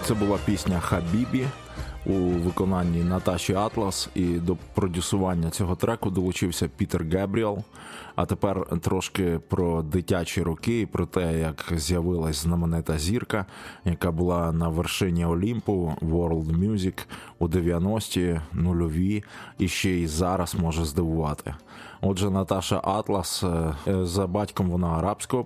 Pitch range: 80-95 Hz